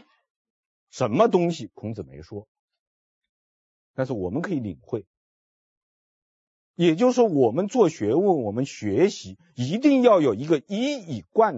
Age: 50-69